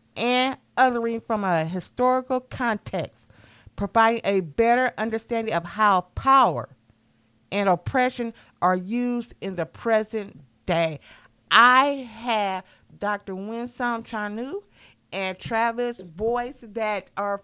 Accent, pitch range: American, 200-245 Hz